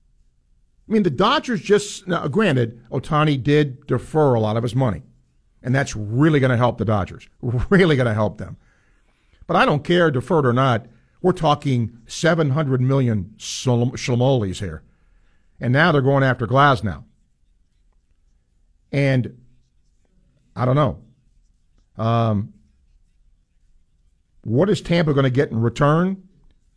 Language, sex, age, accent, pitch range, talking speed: English, male, 50-69, American, 110-155 Hz, 135 wpm